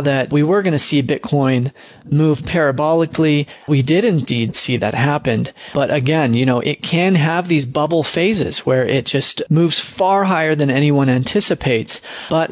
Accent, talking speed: American, 170 wpm